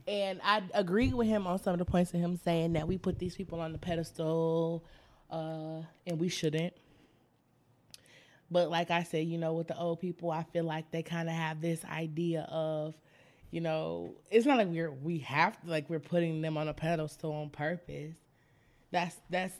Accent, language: American, English